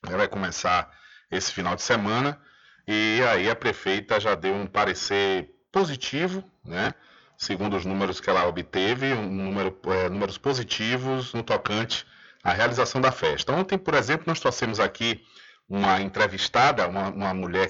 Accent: Brazilian